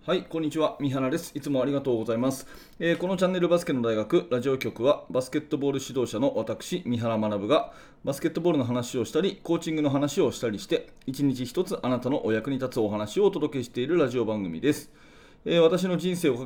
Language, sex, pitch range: Japanese, male, 115-155 Hz